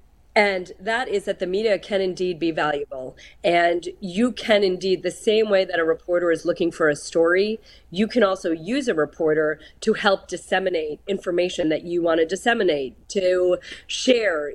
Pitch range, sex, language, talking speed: 170-220 Hz, female, English, 170 wpm